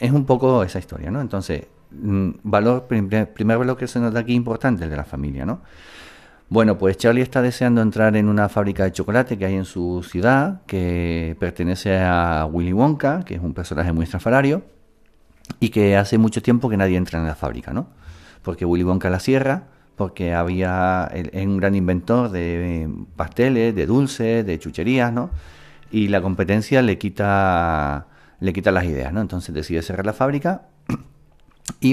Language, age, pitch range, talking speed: Spanish, 50-69, 90-125 Hz, 180 wpm